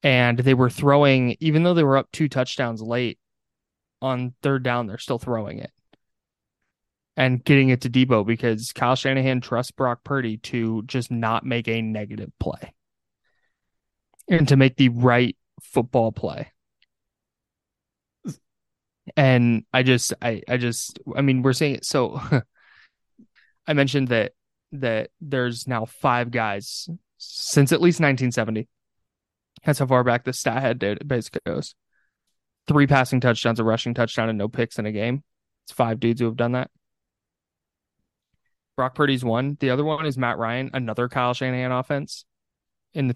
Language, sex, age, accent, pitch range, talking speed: English, male, 20-39, American, 115-135 Hz, 155 wpm